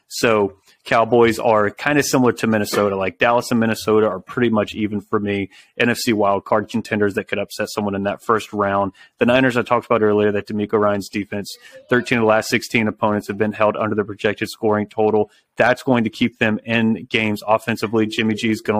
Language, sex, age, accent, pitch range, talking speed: English, male, 30-49, American, 105-115 Hz, 210 wpm